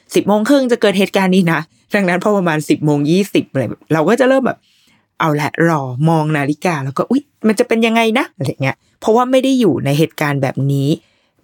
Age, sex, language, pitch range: 20-39, female, Thai, 145-190 Hz